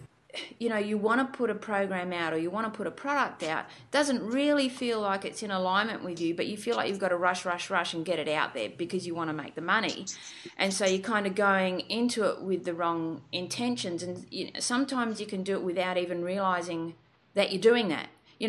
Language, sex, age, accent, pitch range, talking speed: English, female, 30-49, Australian, 175-210 Hz, 240 wpm